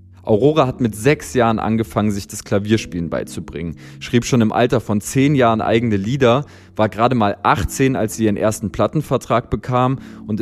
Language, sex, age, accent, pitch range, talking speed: German, male, 20-39, German, 105-130 Hz, 175 wpm